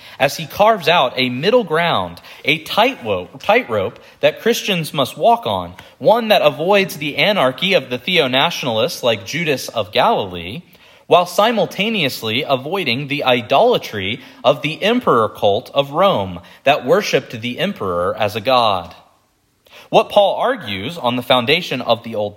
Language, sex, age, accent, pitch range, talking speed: English, male, 30-49, American, 120-185 Hz, 140 wpm